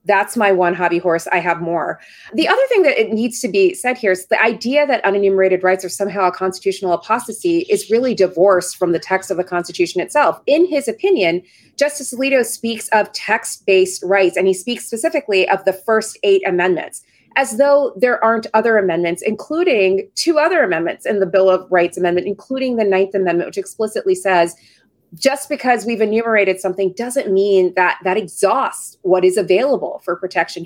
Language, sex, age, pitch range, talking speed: English, female, 30-49, 185-235 Hz, 185 wpm